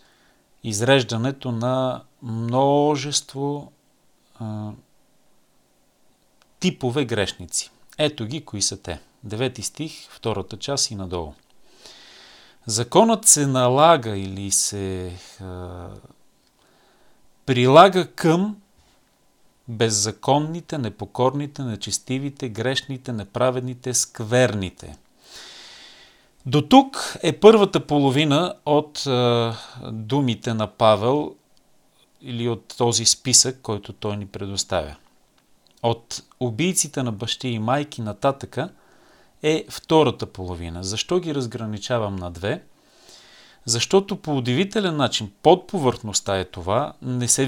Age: 40-59